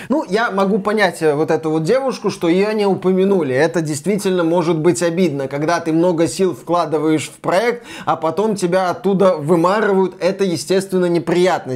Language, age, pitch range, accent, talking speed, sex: Russian, 20-39, 185-270 Hz, native, 165 wpm, male